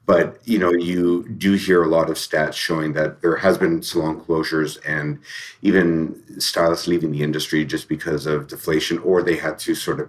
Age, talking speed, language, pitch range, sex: 50-69, 195 wpm, English, 75-90 Hz, male